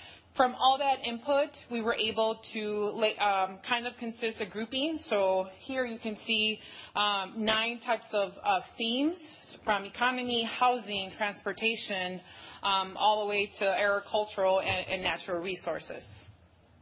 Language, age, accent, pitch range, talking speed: English, 30-49, American, 185-230 Hz, 140 wpm